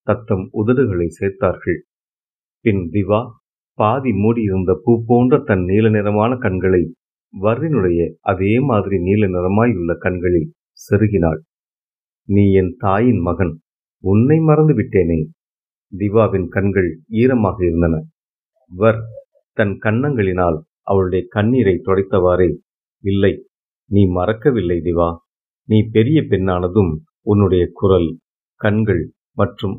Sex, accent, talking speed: male, native, 90 wpm